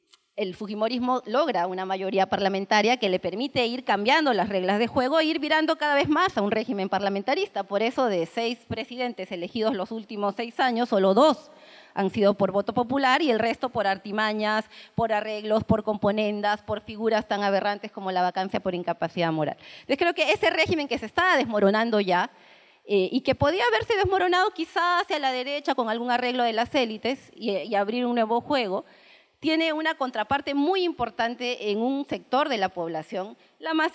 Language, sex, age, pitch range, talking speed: Spanish, female, 30-49, 200-265 Hz, 185 wpm